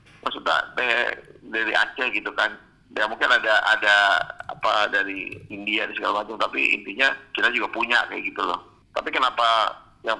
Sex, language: male, Indonesian